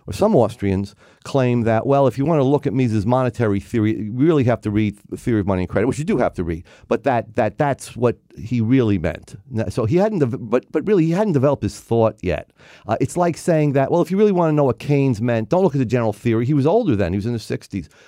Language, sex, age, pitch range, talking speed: English, male, 40-59, 95-125 Hz, 270 wpm